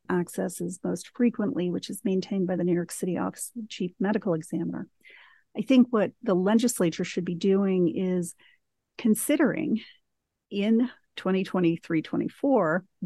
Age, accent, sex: 50-69, American, female